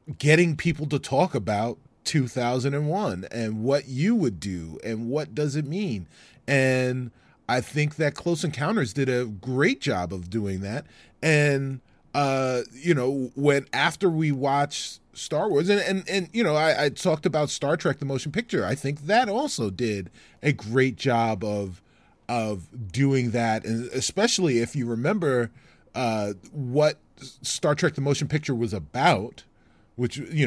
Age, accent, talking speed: 30-49, American, 160 wpm